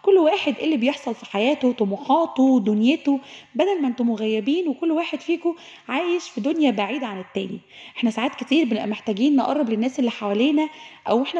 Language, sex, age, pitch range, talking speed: Arabic, female, 20-39, 225-300 Hz, 175 wpm